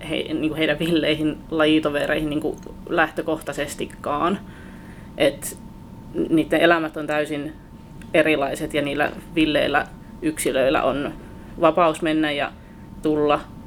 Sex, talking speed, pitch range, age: female, 95 wpm, 150-165 Hz, 20-39